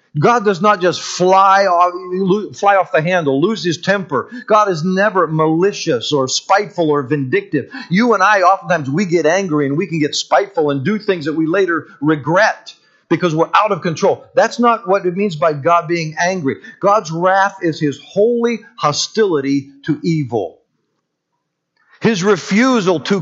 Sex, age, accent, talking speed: male, 50-69, American, 170 wpm